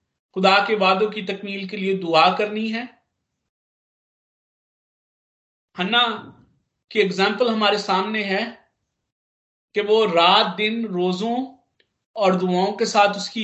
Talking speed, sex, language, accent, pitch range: 115 wpm, male, Hindi, native, 195-250 Hz